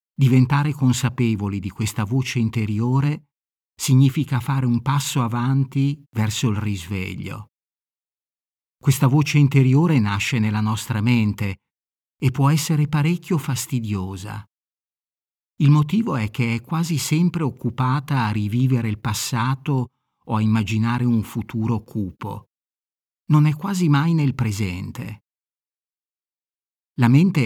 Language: Italian